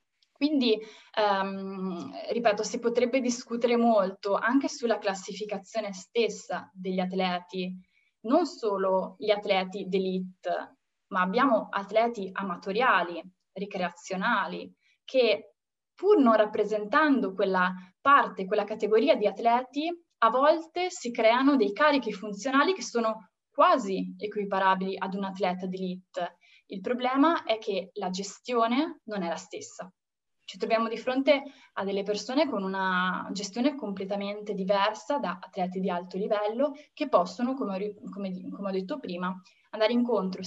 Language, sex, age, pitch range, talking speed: Italian, female, 20-39, 195-245 Hz, 125 wpm